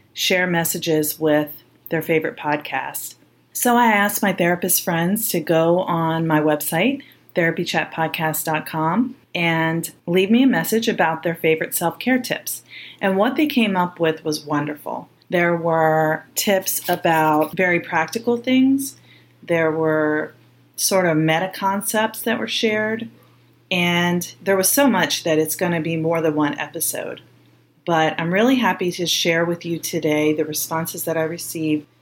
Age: 30-49